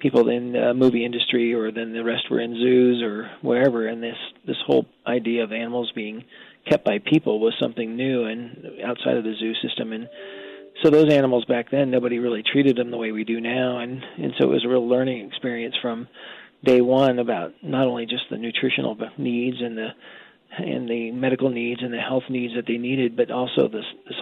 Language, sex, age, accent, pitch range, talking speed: English, male, 40-59, American, 115-125 Hz, 210 wpm